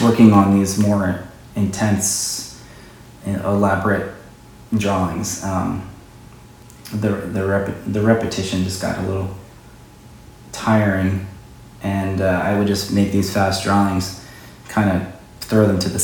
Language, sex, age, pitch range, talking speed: English, male, 30-49, 95-115 Hz, 125 wpm